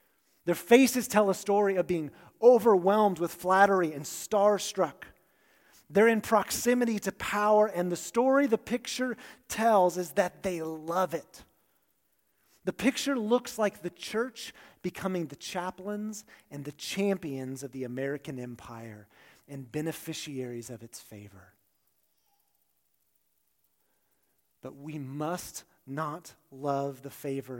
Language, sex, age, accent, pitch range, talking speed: English, male, 30-49, American, 160-225 Hz, 120 wpm